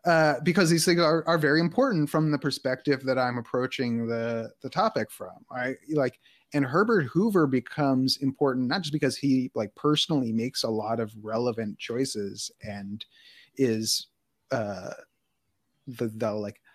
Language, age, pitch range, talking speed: English, 30-49, 115-150 Hz, 155 wpm